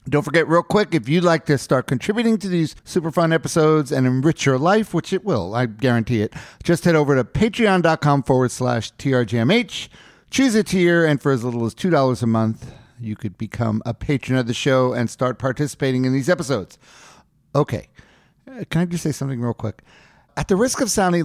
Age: 50-69